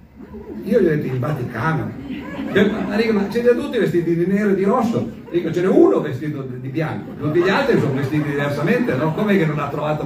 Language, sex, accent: Italian, male, native